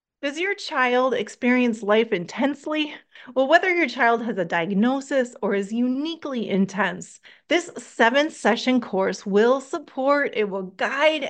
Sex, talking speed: female, 135 wpm